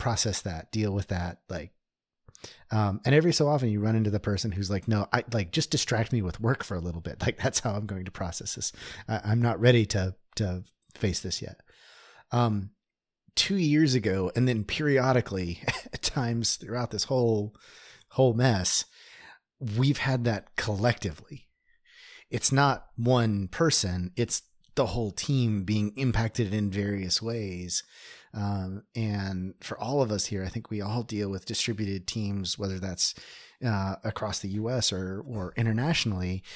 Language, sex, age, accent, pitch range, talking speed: English, male, 30-49, American, 100-125 Hz, 165 wpm